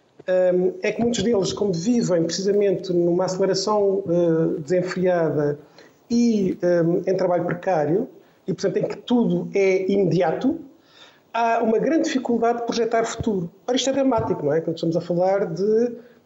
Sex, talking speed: male, 140 wpm